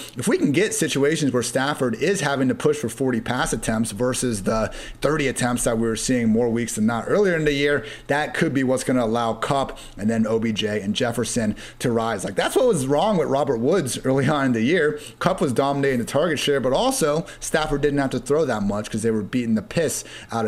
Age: 30-49